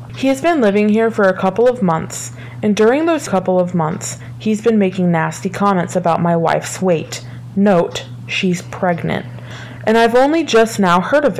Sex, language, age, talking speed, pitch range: female, English, 20-39, 185 wpm, 155-220 Hz